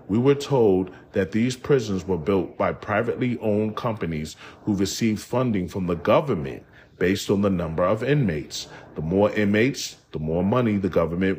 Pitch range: 95-130 Hz